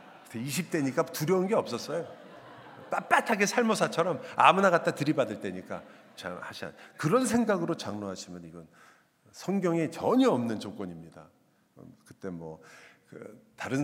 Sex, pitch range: male, 100-140 Hz